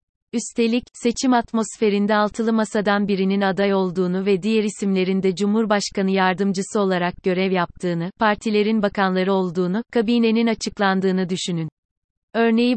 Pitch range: 190-220 Hz